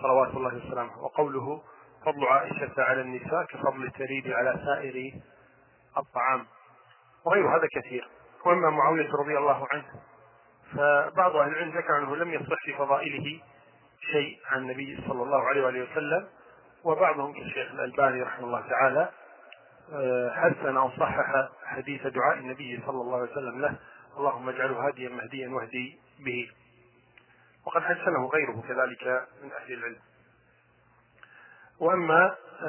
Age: 40-59